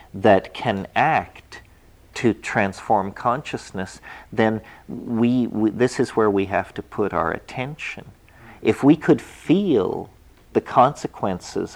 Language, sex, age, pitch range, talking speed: English, male, 50-69, 95-110 Hz, 125 wpm